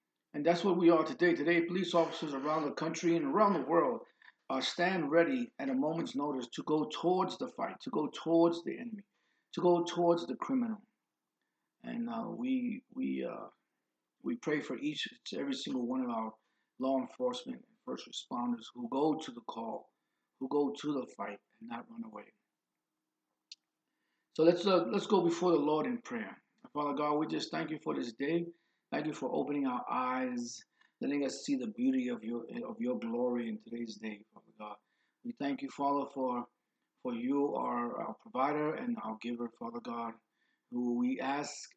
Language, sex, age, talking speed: English, male, 50-69, 185 wpm